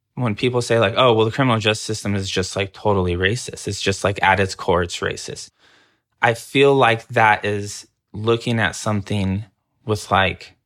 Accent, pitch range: American, 95-115 Hz